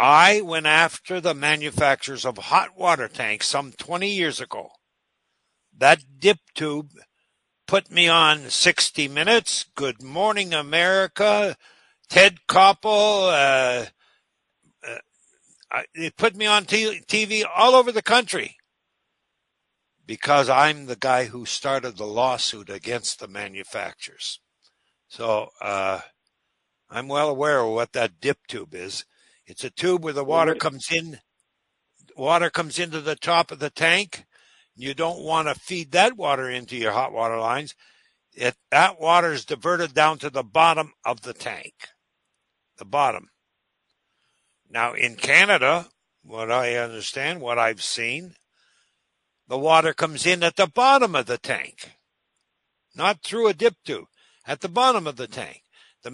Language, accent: English, American